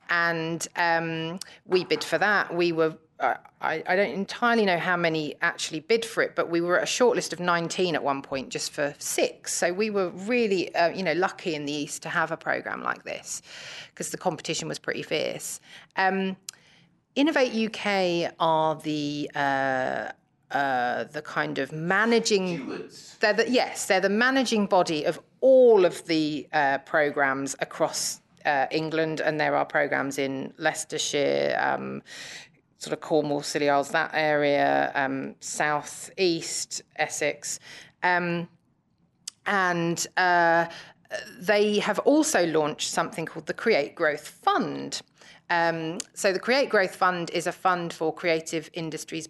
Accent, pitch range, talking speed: British, 155-195 Hz, 150 wpm